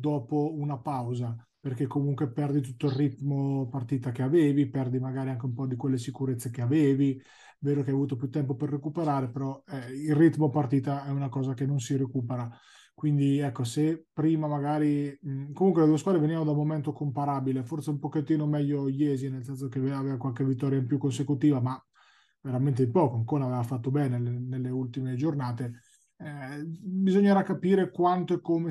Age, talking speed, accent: 30-49, 185 wpm, native